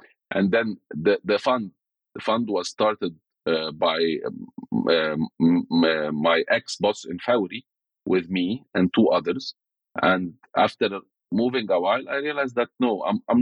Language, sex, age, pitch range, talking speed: English, male, 40-59, 90-115 Hz, 165 wpm